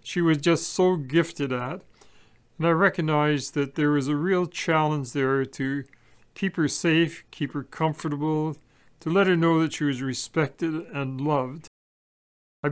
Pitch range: 145-165 Hz